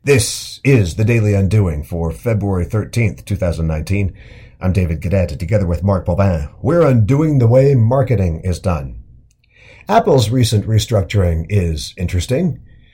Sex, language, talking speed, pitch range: male, English, 130 wpm, 95-120 Hz